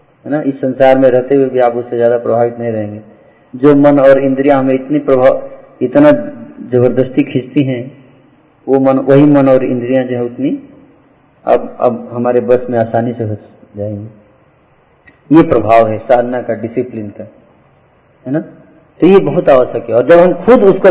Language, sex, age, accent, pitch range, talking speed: Hindi, male, 50-69, native, 115-165 Hz, 170 wpm